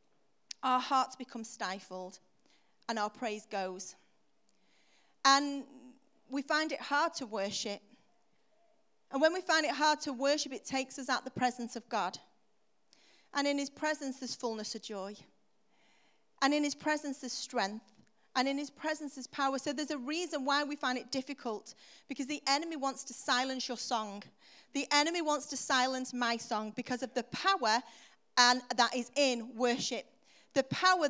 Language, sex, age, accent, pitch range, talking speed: English, female, 40-59, British, 235-295 Hz, 165 wpm